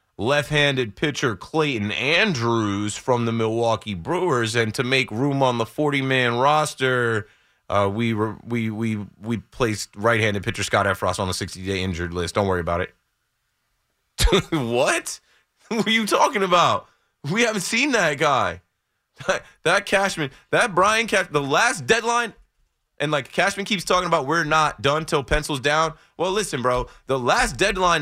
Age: 20-39